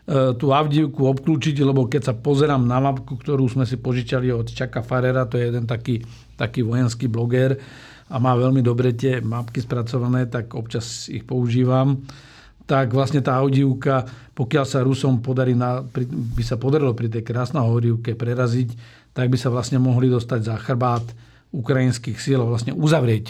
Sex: male